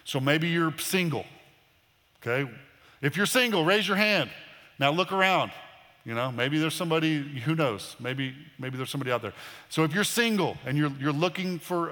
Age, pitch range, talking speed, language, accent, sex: 40-59, 130-175 Hz, 180 wpm, English, American, male